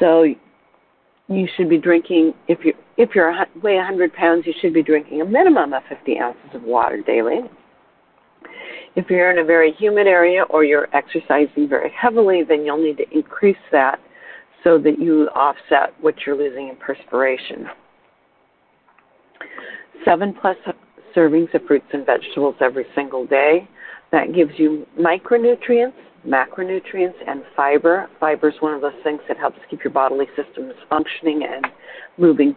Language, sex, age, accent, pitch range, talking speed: English, female, 50-69, American, 155-200 Hz, 155 wpm